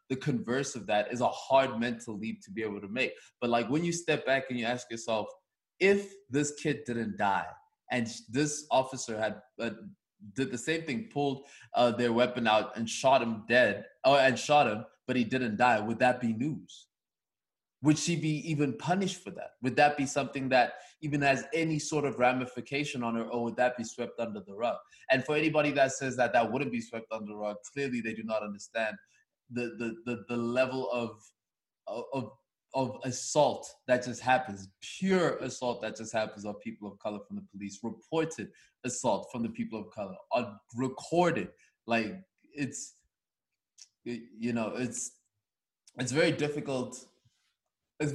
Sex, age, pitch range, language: male, 20-39, 115-145 Hz, English